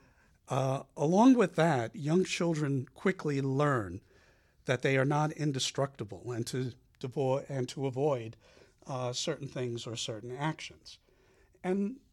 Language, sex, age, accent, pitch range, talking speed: English, male, 60-79, American, 120-155 Hz, 130 wpm